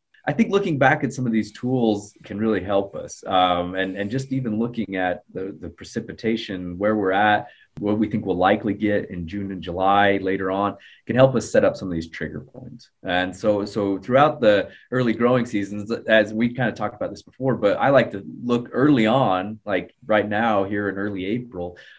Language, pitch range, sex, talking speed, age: English, 90-110 Hz, male, 215 wpm, 20-39